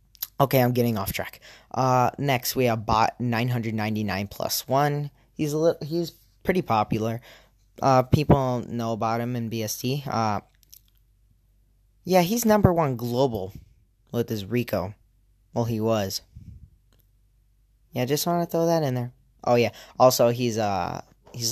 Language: English